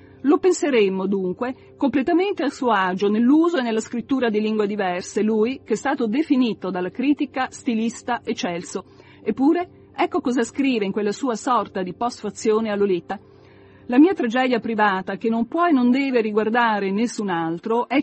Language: Italian